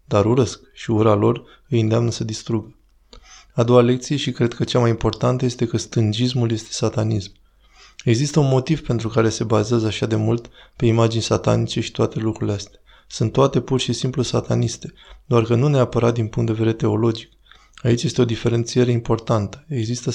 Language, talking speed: Romanian, 180 wpm